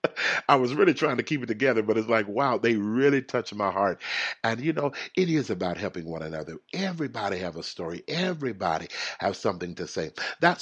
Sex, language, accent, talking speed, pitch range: male, English, American, 205 wpm, 90-140 Hz